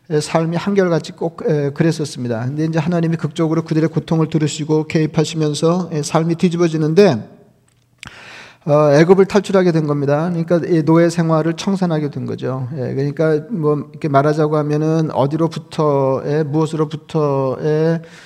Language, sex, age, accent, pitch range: Korean, male, 40-59, native, 145-165 Hz